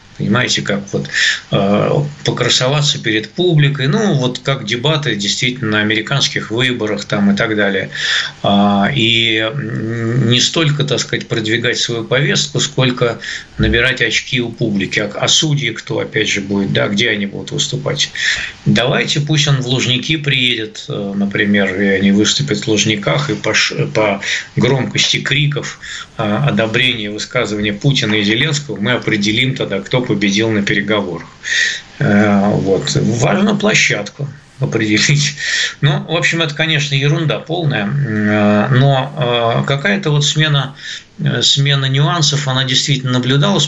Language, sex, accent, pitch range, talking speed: Russian, male, native, 110-145 Hz, 125 wpm